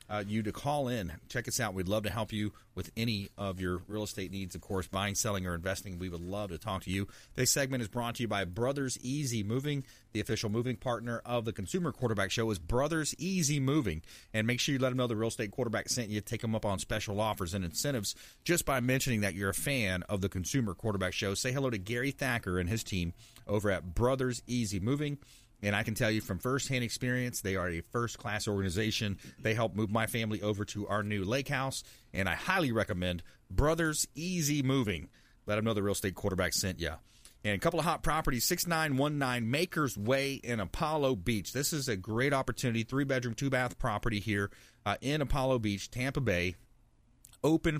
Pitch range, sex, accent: 100-130 Hz, male, American